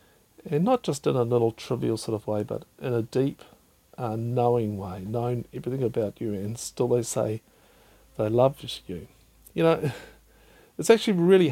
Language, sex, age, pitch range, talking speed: English, male, 50-69, 115-150 Hz, 170 wpm